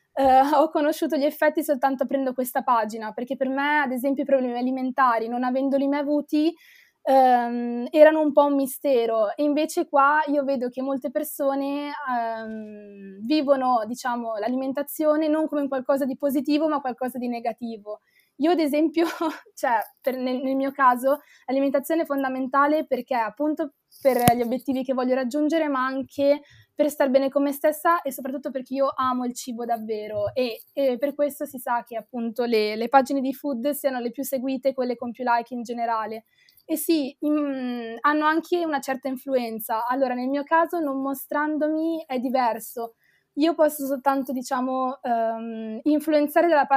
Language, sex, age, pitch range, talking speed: Italian, female, 20-39, 250-290 Hz, 165 wpm